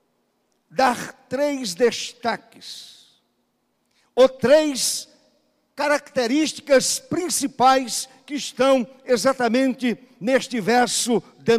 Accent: Brazilian